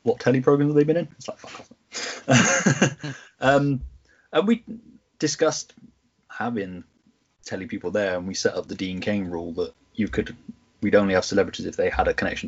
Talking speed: 190 wpm